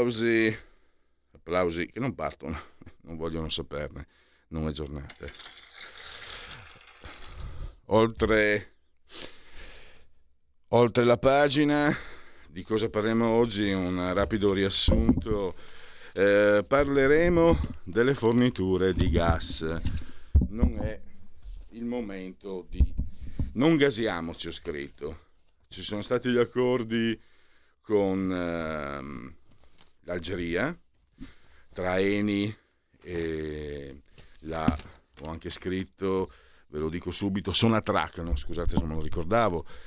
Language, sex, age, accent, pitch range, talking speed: Italian, male, 50-69, native, 85-115 Hz, 95 wpm